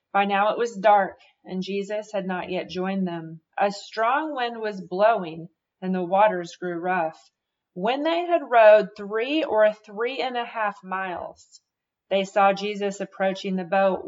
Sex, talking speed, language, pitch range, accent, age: female, 165 wpm, English, 175-210 Hz, American, 30-49